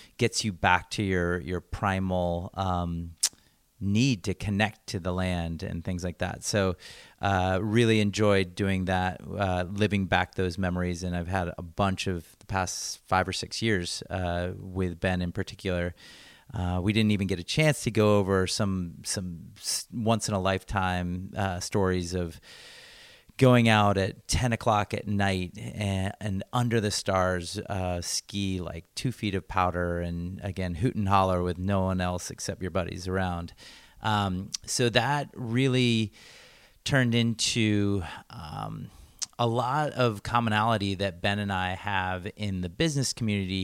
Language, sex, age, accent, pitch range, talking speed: English, male, 30-49, American, 90-110 Hz, 160 wpm